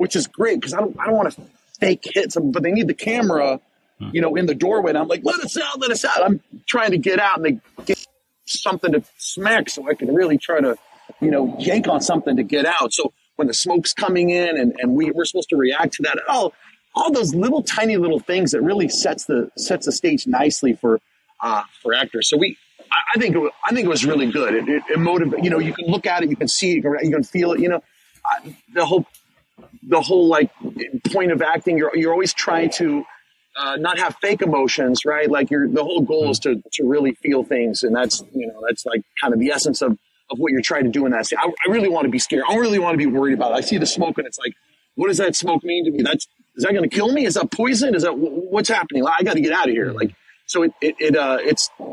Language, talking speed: English, 270 wpm